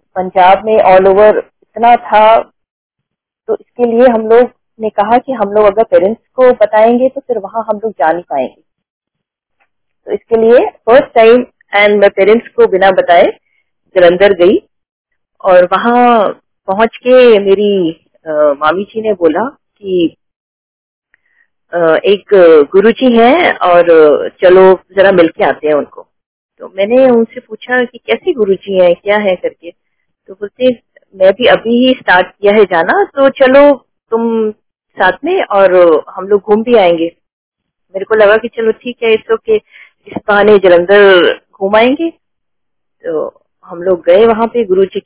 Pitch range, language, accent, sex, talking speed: 185-255 Hz, Hindi, native, female, 155 wpm